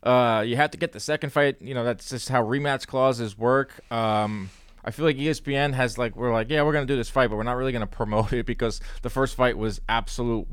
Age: 20-39